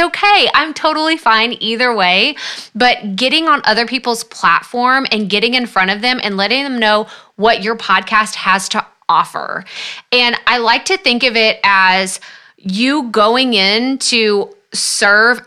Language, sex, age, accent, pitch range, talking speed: English, female, 20-39, American, 200-250 Hz, 160 wpm